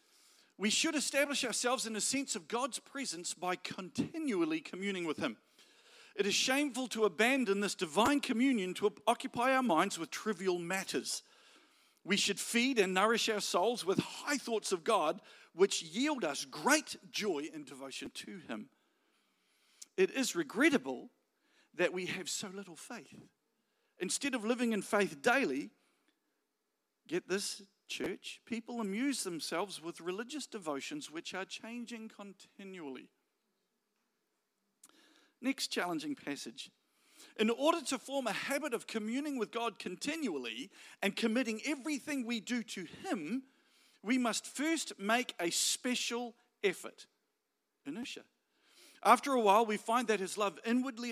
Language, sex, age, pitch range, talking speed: English, male, 50-69, 195-270 Hz, 135 wpm